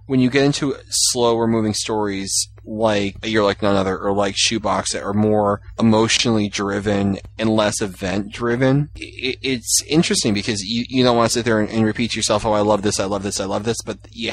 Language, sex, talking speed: English, male, 205 wpm